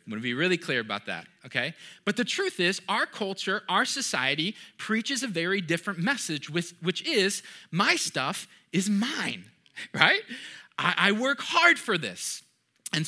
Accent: American